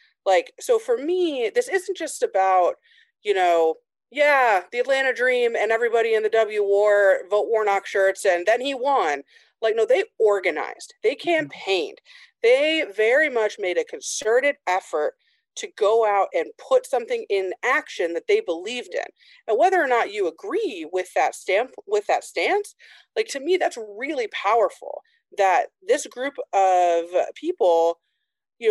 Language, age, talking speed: English, 30-49, 160 wpm